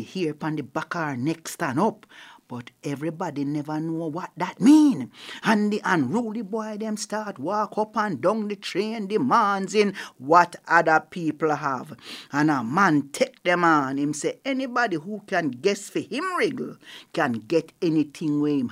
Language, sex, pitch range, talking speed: English, male, 165-245 Hz, 170 wpm